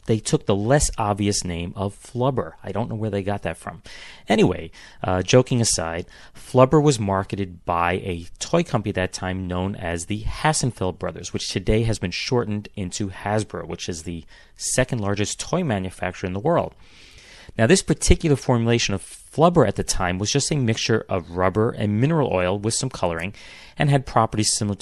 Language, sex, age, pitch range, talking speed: English, male, 30-49, 90-125 Hz, 185 wpm